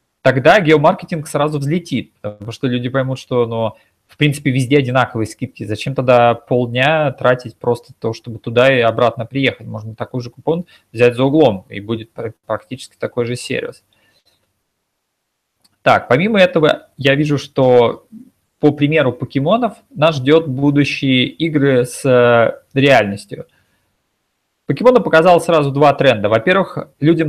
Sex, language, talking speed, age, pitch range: male, Russian, 135 wpm, 20-39, 120-155 Hz